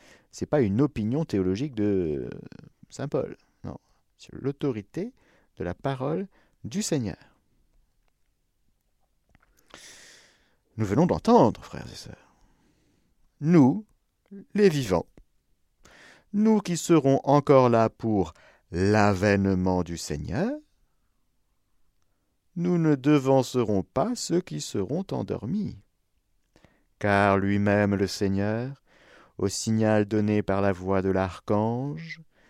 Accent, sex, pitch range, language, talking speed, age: French, male, 85-135 Hz, French, 100 wpm, 50-69